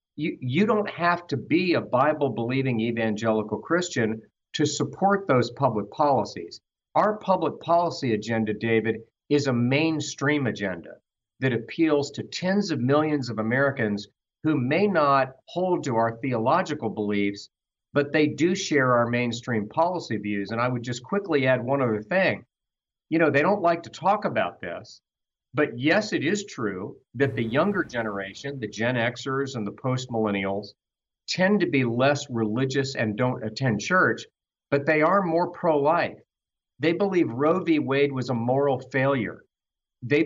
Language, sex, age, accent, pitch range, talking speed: English, male, 50-69, American, 115-155 Hz, 155 wpm